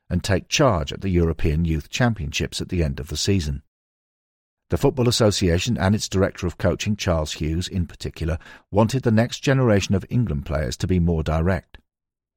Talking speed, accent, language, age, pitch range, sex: 180 wpm, British, English, 50-69, 80-110 Hz, male